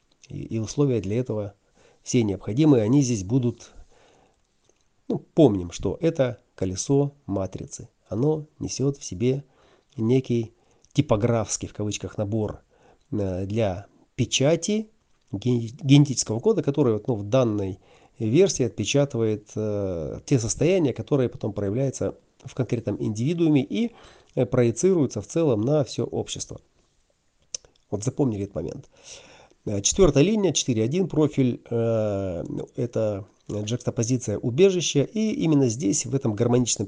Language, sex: Russian, male